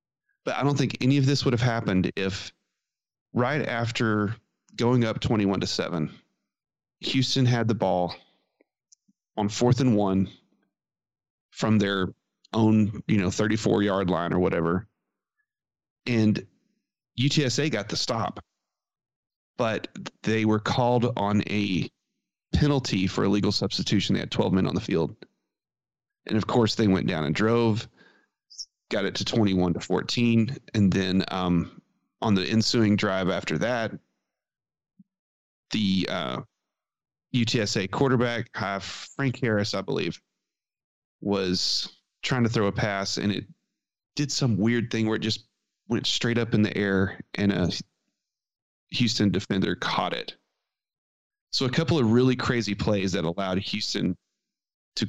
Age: 30-49